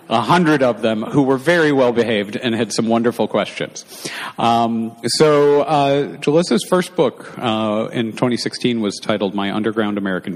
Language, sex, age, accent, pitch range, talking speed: English, male, 50-69, American, 95-120 Hz, 155 wpm